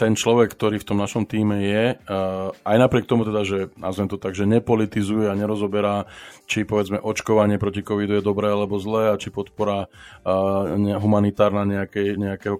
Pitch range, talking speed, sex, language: 100-110 Hz, 170 wpm, male, Slovak